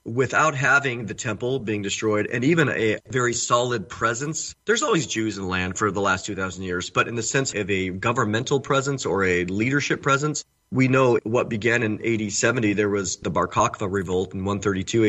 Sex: male